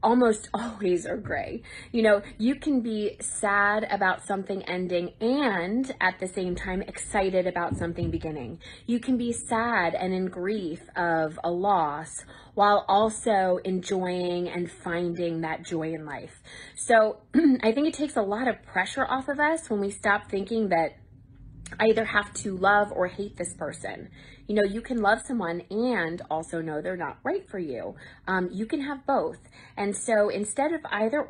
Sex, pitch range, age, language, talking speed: female, 175-225 Hz, 20-39, English, 175 wpm